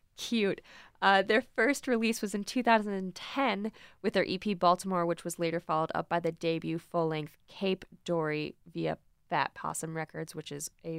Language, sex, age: English, female, 20-39